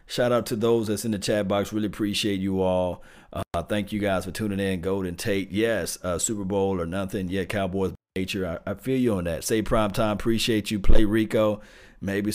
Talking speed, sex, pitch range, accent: 220 wpm, male, 95-115 Hz, American